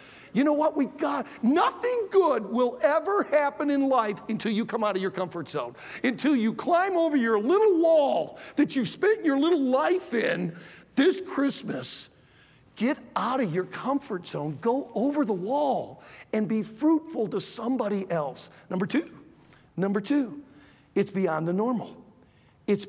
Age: 50-69